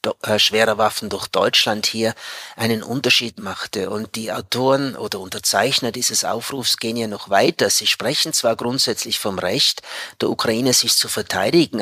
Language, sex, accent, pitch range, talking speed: German, male, Austrian, 115-135 Hz, 150 wpm